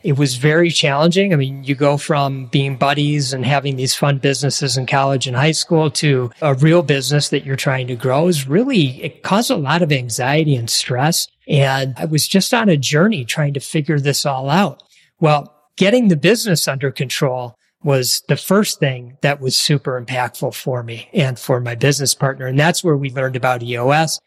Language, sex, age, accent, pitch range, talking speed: English, male, 40-59, American, 135-175 Hz, 200 wpm